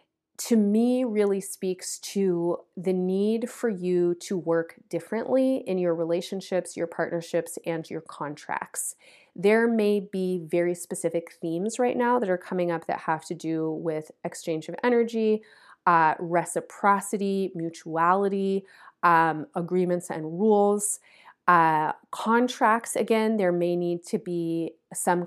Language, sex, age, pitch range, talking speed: English, female, 30-49, 170-215 Hz, 135 wpm